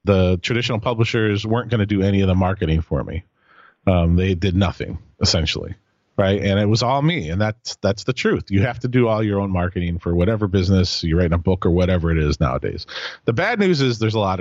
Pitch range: 90-110 Hz